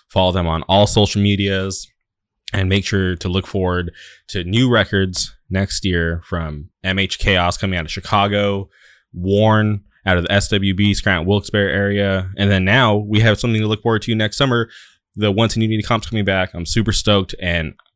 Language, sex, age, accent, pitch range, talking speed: English, male, 20-39, American, 90-100 Hz, 185 wpm